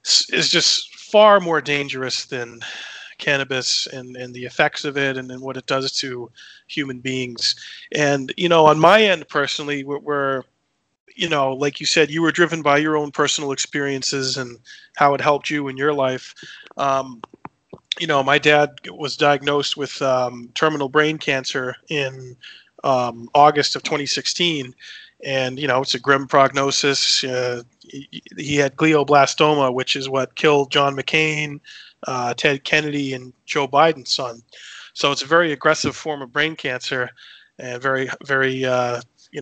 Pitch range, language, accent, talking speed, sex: 130-150 Hz, English, American, 165 wpm, male